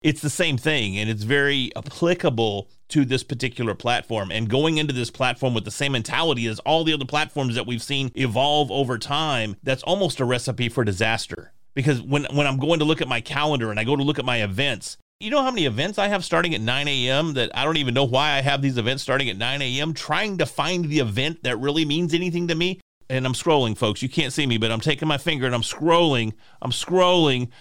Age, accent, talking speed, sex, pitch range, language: 30-49, American, 240 wpm, male, 120-160 Hz, English